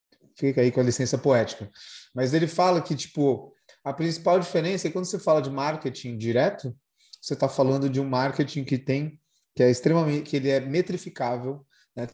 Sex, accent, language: male, Brazilian, Portuguese